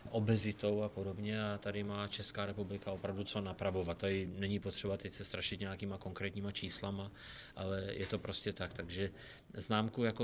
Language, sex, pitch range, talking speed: Czech, male, 100-115 Hz, 165 wpm